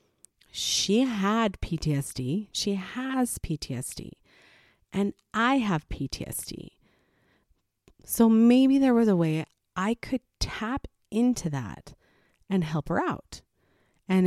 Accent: American